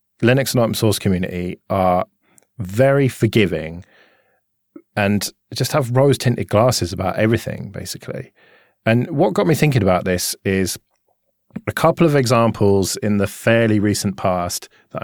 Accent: British